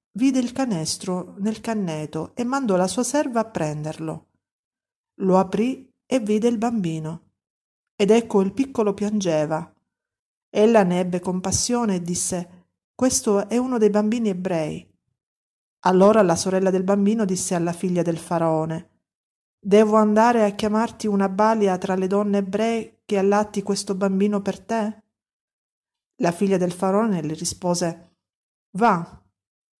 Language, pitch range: Italian, 180-220 Hz